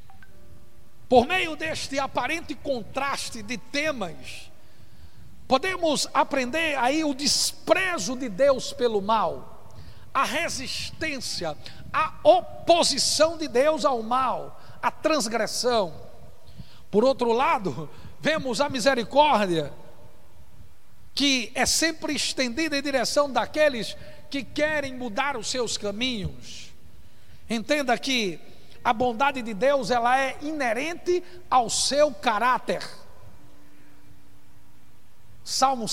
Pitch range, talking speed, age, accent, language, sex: 220-290 Hz, 95 wpm, 60-79, Brazilian, Portuguese, male